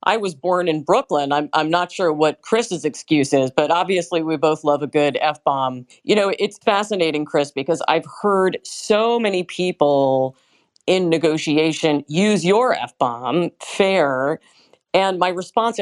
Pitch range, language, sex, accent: 155-190 Hz, English, female, American